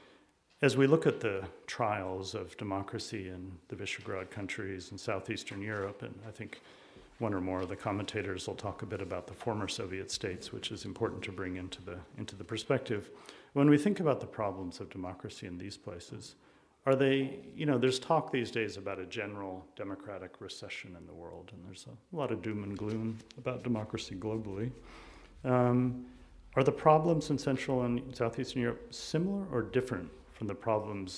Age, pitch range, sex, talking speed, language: 40-59, 100-130 Hz, male, 185 wpm, English